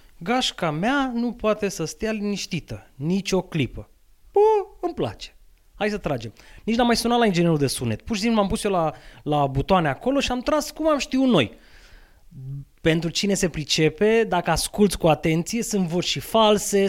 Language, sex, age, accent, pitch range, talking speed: Romanian, male, 20-39, native, 135-195 Hz, 190 wpm